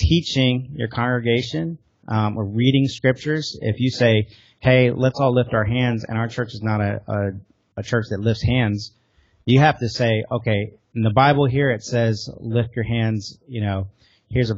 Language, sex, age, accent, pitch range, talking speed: English, male, 40-59, American, 105-120 Hz, 190 wpm